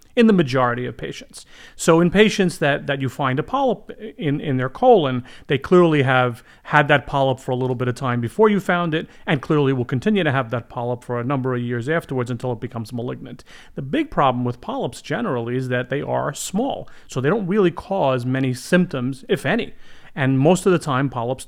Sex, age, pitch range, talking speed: male, 40-59, 120-155 Hz, 220 wpm